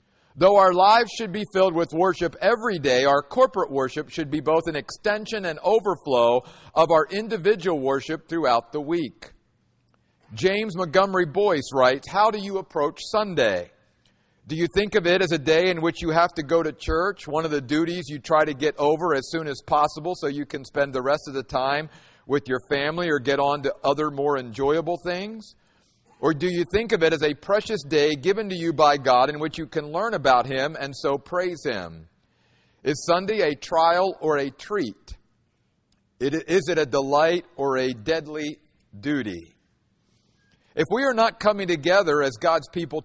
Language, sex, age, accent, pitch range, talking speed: English, male, 50-69, American, 145-185 Hz, 190 wpm